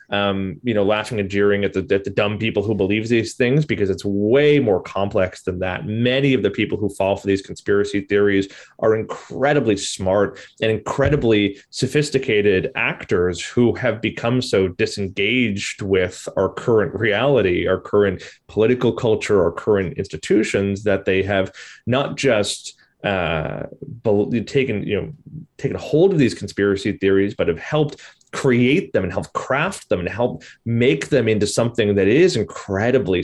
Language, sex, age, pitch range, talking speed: English, male, 30-49, 100-130 Hz, 160 wpm